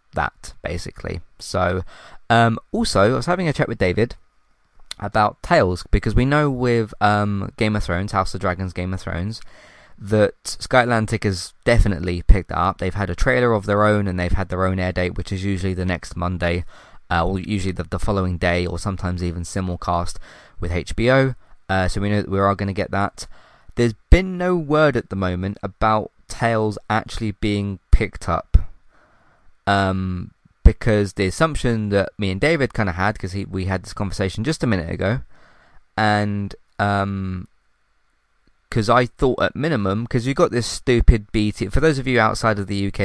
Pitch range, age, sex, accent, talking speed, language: 90-110 Hz, 20-39, male, British, 185 wpm, English